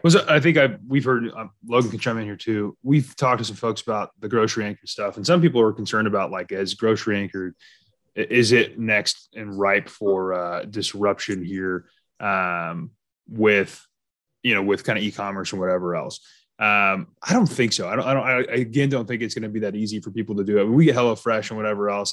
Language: English